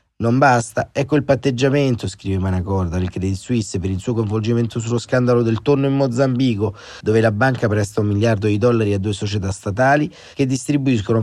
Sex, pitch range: male, 105-125 Hz